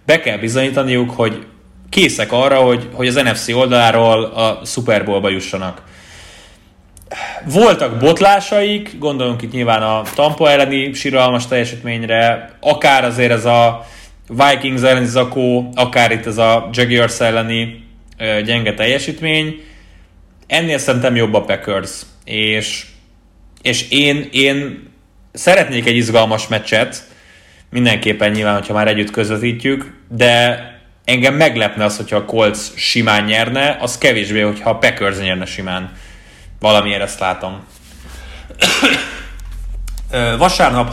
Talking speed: 115 wpm